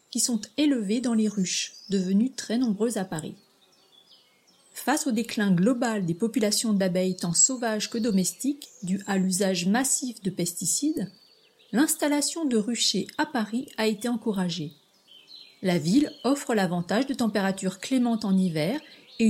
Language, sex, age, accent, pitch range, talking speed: French, female, 40-59, French, 190-260 Hz, 145 wpm